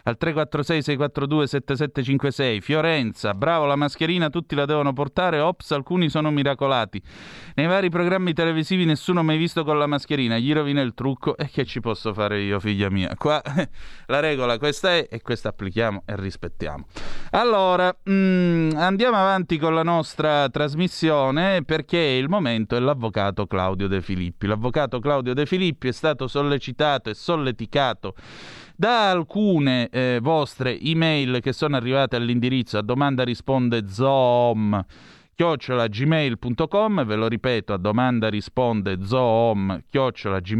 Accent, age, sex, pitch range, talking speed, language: native, 30-49, male, 115-160 Hz, 135 wpm, Italian